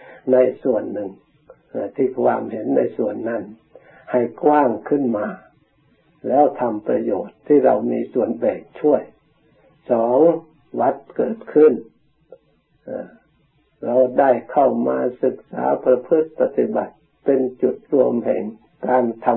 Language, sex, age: Thai, male, 60-79